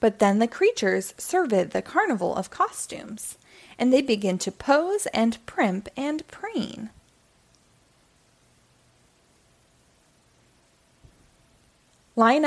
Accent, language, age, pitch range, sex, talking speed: American, English, 20-39, 215-305 Hz, female, 90 wpm